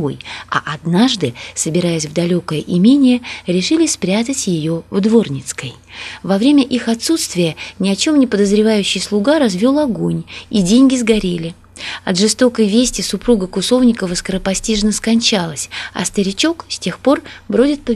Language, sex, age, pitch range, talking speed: Russian, female, 20-39, 170-235 Hz, 135 wpm